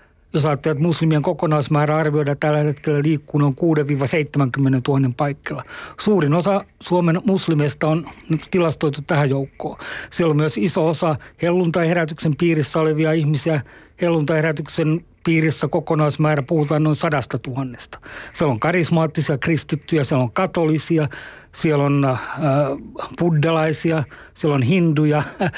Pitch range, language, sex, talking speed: 145-170 Hz, Finnish, male, 125 wpm